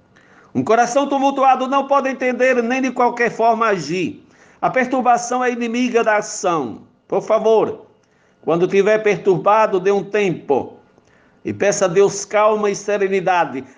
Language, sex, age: Portuguese, male, 60-79